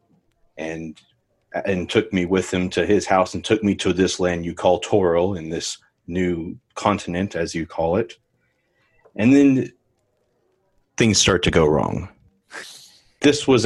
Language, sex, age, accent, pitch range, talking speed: English, male, 30-49, American, 85-100 Hz, 155 wpm